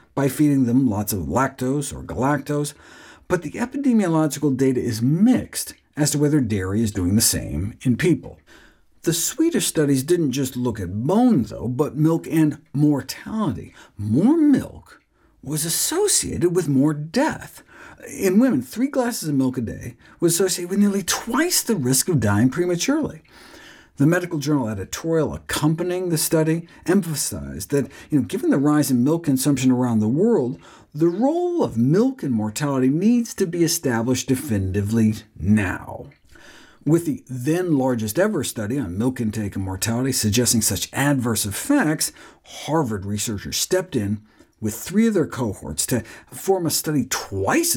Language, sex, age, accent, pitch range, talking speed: English, male, 50-69, American, 115-170 Hz, 150 wpm